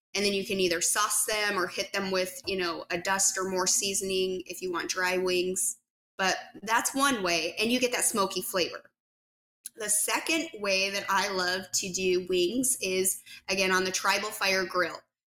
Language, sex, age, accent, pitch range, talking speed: English, female, 20-39, American, 185-220 Hz, 195 wpm